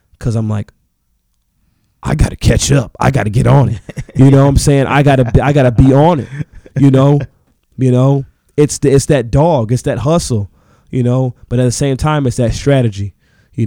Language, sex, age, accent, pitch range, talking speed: English, male, 20-39, American, 115-145 Hz, 225 wpm